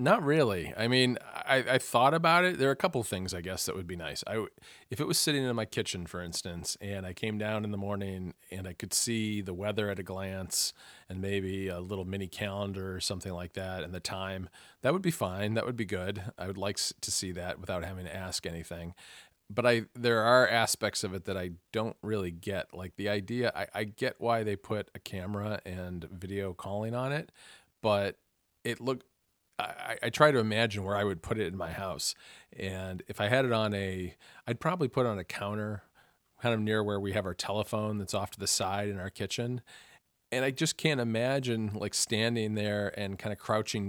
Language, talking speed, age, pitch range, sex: English, 225 wpm, 40-59, 95-115 Hz, male